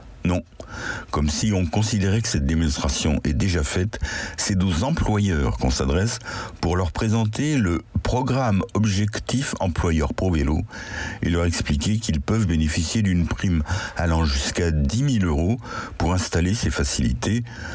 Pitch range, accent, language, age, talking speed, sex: 80-110 Hz, French, French, 60-79, 140 wpm, male